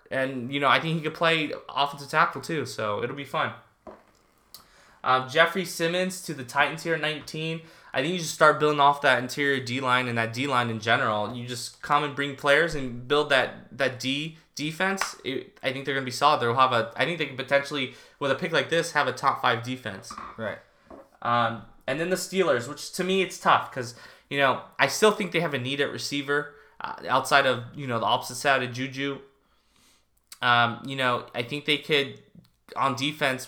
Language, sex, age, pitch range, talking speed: English, male, 20-39, 125-150 Hz, 205 wpm